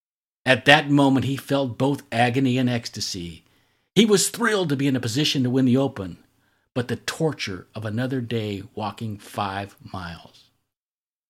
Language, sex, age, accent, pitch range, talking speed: English, male, 50-69, American, 115-155 Hz, 160 wpm